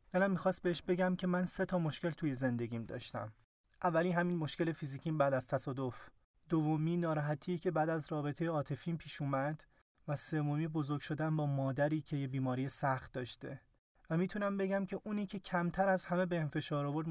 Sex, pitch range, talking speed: male, 135-170 Hz, 180 wpm